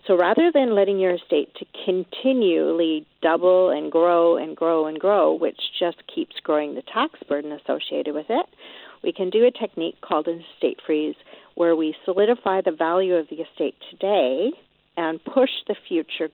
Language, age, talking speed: English, 50-69, 175 wpm